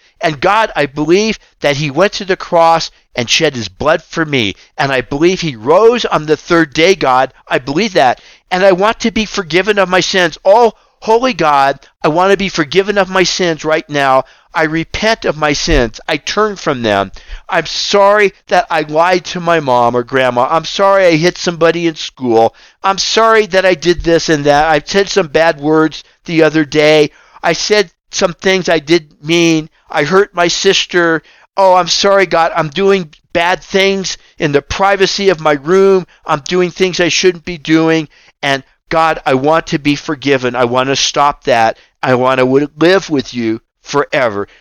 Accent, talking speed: American, 195 wpm